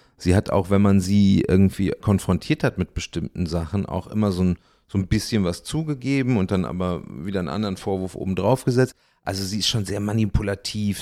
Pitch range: 90-110 Hz